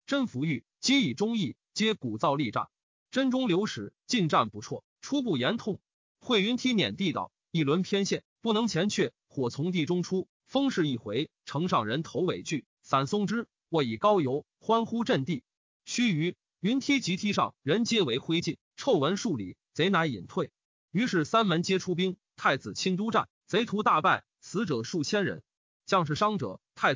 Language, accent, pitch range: Chinese, native, 155-215 Hz